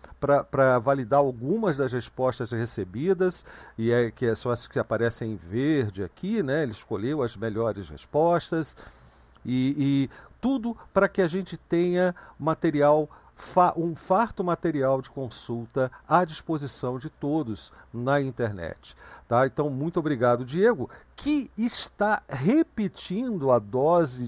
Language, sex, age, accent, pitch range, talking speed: Portuguese, male, 50-69, Brazilian, 120-165 Hz, 135 wpm